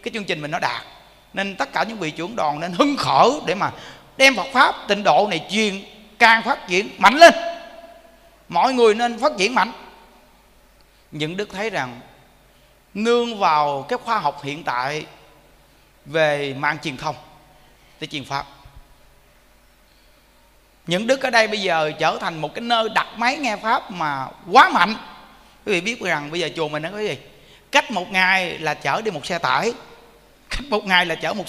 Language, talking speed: Vietnamese, 185 wpm